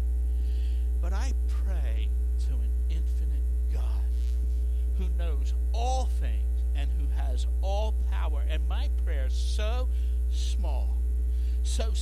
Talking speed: 110 wpm